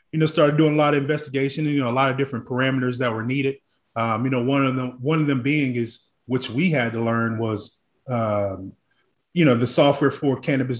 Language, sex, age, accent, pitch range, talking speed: English, male, 20-39, American, 120-140 Hz, 240 wpm